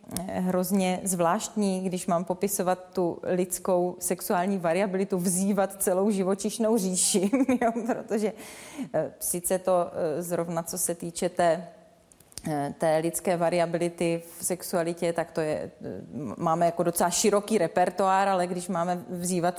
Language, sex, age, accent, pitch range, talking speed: Czech, female, 30-49, native, 170-200 Hz, 130 wpm